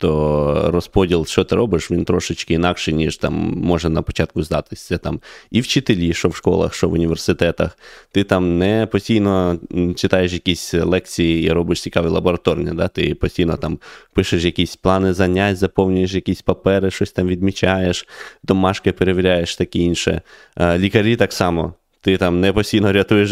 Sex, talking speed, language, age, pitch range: male, 155 wpm, Ukrainian, 20-39, 85-100 Hz